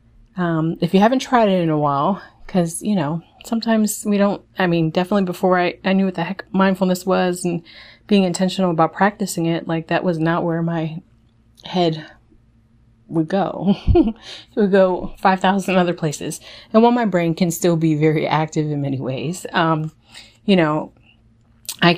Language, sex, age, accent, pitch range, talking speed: English, female, 30-49, American, 155-185 Hz, 175 wpm